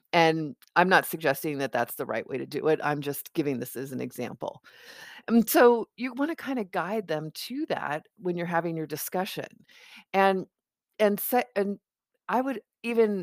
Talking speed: 190 wpm